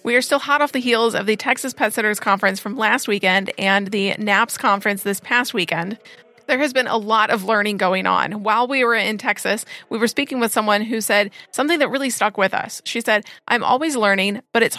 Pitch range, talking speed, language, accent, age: 210-250 Hz, 230 wpm, English, American, 30-49